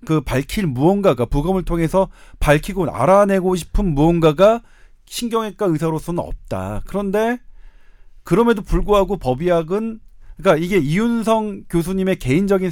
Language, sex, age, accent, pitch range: Korean, male, 40-59, native, 130-195 Hz